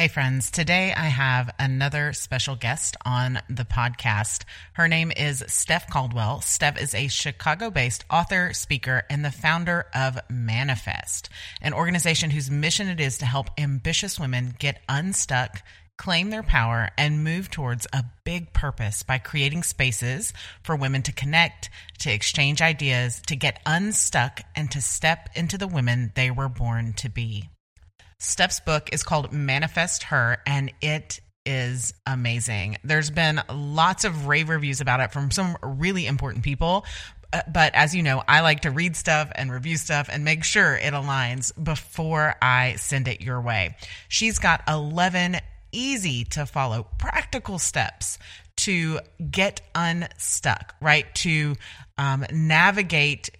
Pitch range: 120-155 Hz